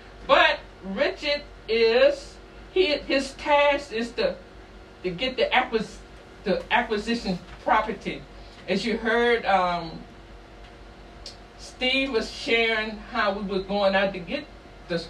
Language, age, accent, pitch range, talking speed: English, 60-79, American, 185-240 Hz, 120 wpm